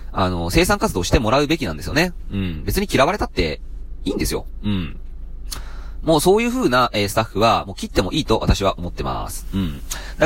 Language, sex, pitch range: Japanese, male, 85-130 Hz